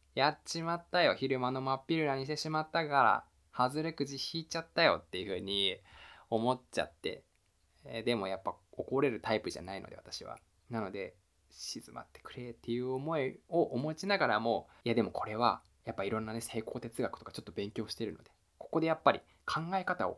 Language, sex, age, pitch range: Japanese, male, 20-39, 110-170 Hz